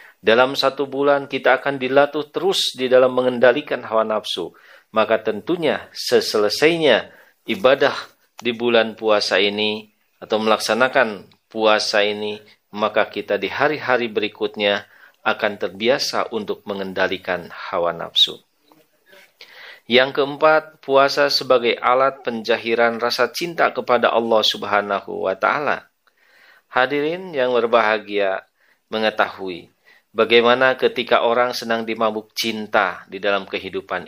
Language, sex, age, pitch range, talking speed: Indonesian, male, 40-59, 110-140 Hz, 105 wpm